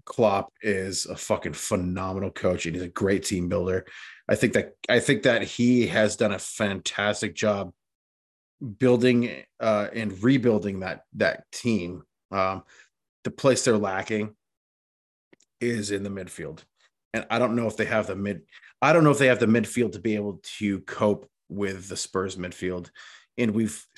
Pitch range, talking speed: 95-115 Hz, 170 wpm